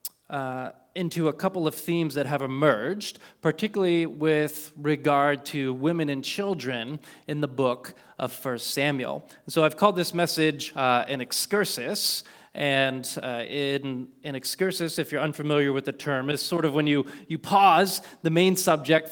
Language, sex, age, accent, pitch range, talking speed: English, male, 30-49, American, 135-165 Hz, 160 wpm